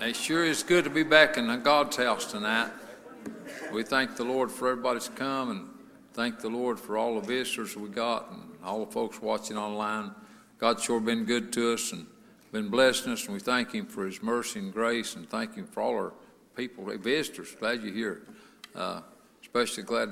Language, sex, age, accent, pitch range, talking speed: English, male, 60-79, American, 120-195 Hz, 205 wpm